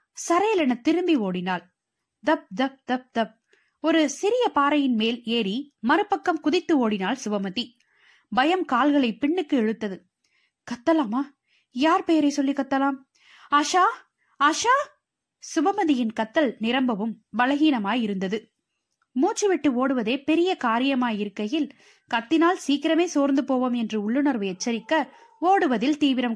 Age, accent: 20-39, native